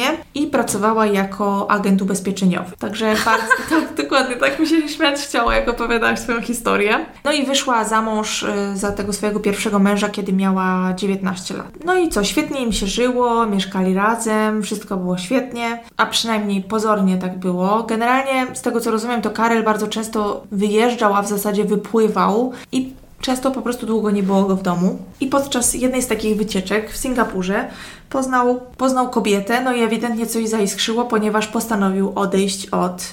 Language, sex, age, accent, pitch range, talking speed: Polish, female, 20-39, native, 195-245 Hz, 165 wpm